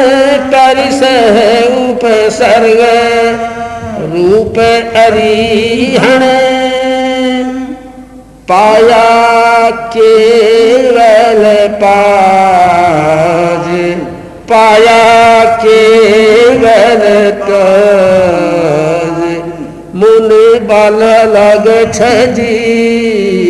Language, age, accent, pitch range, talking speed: Hindi, 60-79, native, 200-240 Hz, 35 wpm